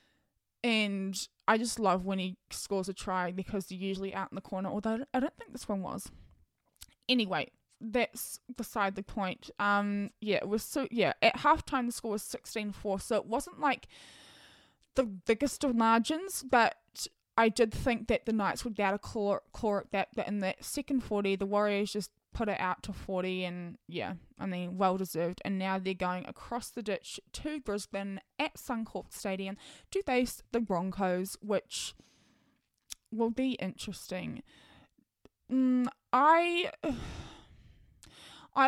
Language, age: English, 10-29